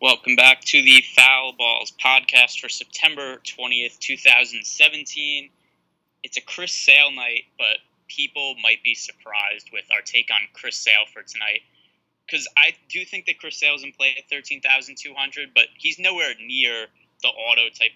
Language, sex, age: English, male, 20-39